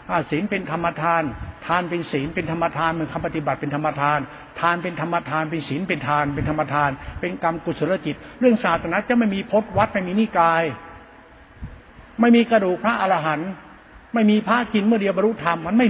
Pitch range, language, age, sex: 155-210 Hz, Thai, 60-79, male